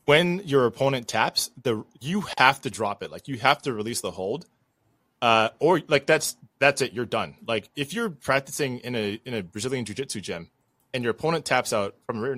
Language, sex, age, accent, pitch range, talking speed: English, male, 20-39, American, 115-140 Hz, 215 wpm